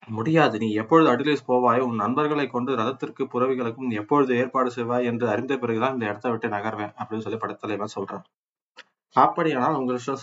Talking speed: 160 wpm